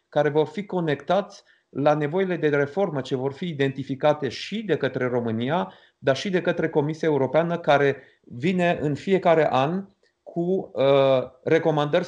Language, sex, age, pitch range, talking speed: Romanian, male, 40-59, 130-160 Hz, 145 wpm